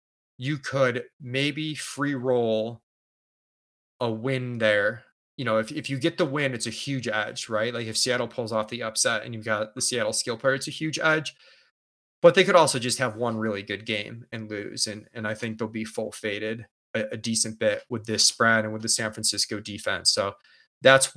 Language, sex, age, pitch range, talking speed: English, male, 20-39, 110-135 Hz, 215 wpm